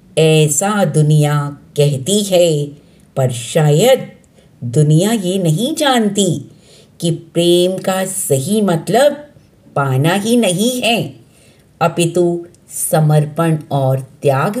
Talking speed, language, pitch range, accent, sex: 95 wpm, Hindi, 150-205 Hz, native, female